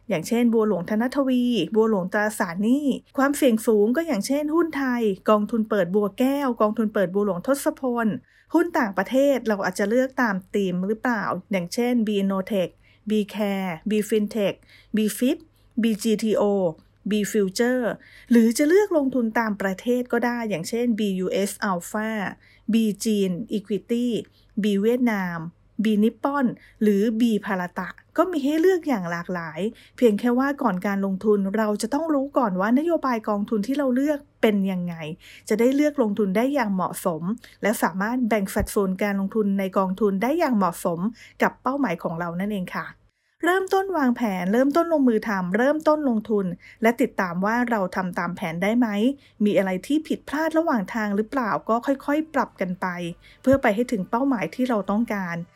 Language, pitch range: English, 195-250 Hz